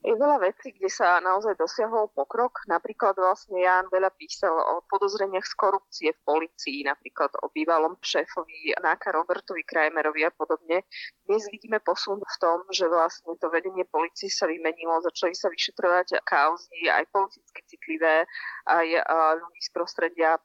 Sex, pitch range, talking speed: female, 160-195 Hz, 150 wpm